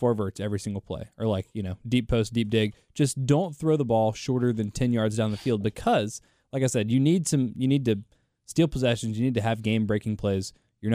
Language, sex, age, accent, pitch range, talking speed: English, male, 20-39, American, 105-130 Hz, 245 wpm